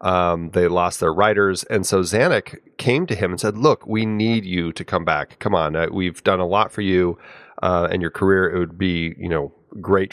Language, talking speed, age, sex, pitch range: English, 230 wpm, 30-49, male, 85-110 Hz